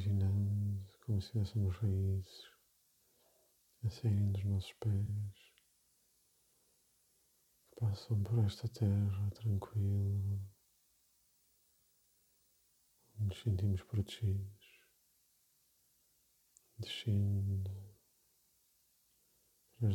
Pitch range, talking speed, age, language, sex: 95-105 Hz, 65 wpm, 50-69, Portuguese, male